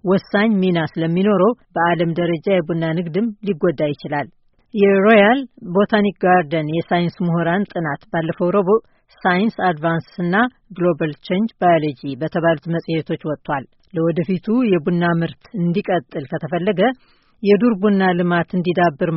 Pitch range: 165-205 Hz